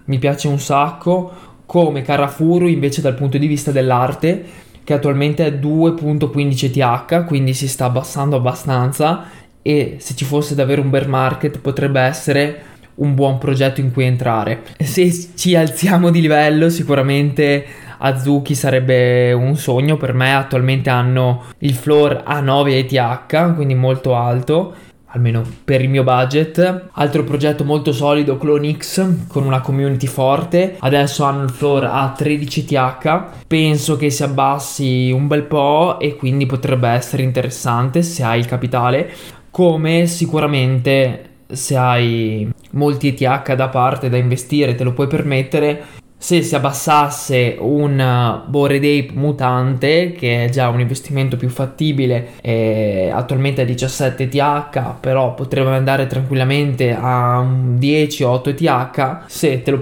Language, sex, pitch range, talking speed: Italian, male, 130-150 Hz, 135 wpm